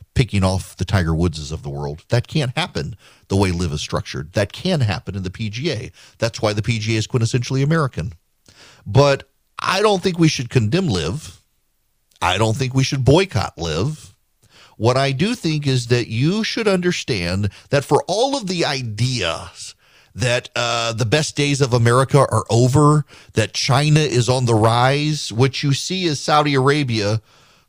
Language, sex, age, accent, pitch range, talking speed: English, male, 40-59, American, 105-145 Hz, 175 wpm